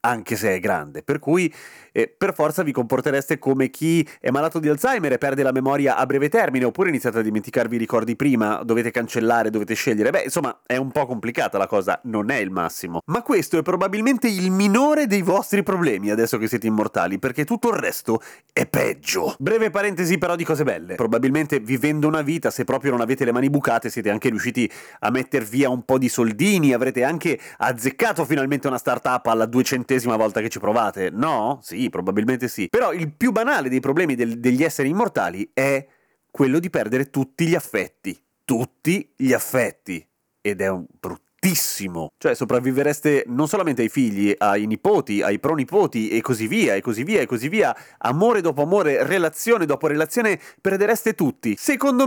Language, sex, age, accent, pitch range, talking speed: Italian, male, 30-49, native, 125-175 Hz, 185 wpm